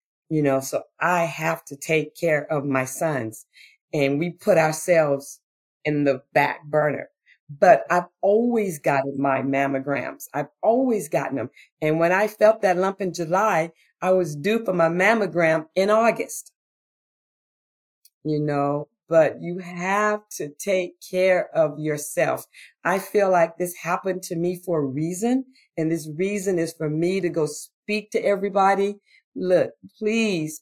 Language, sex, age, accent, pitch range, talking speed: English, female, 40-59, American, 155-230 Hz, 155 wpm